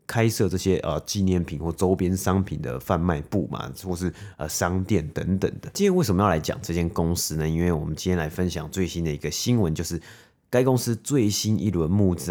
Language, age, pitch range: Chinese, 30-49, 85-115 Hz